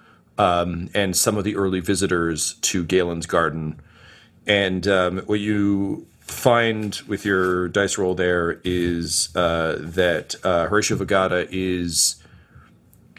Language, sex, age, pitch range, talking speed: English, male, 40-59, 90-110 Hz, 125 wpm